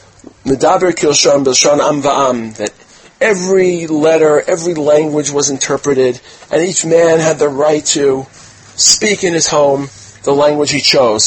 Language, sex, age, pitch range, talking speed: English, male, 40-59, 115-150 Hz, 115 wpm